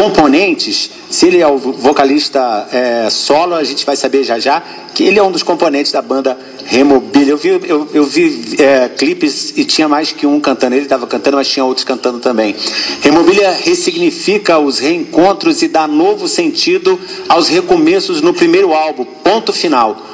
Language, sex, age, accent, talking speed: Portuguese, male, 50-69, Brazilian, 175 wpm